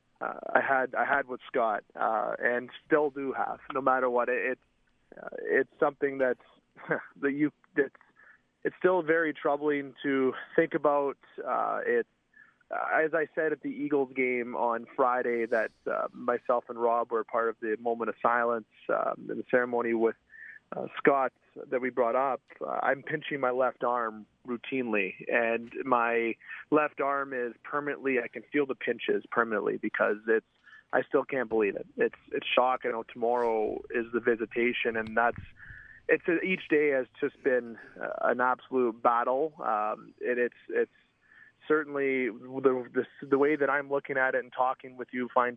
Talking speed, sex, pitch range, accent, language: 175 wpm, male, 120-150 Hz, American, English